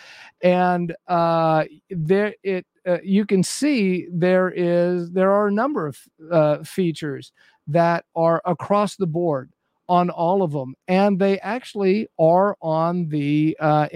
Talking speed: 140 wpm